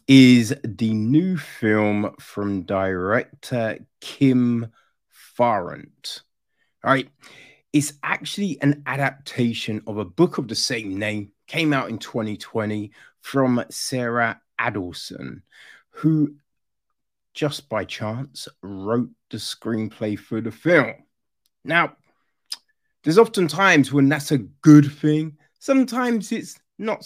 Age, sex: 30-49, male